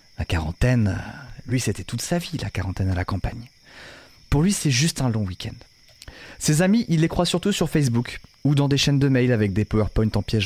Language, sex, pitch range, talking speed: French, male, 100-125 Hz, 220 wpm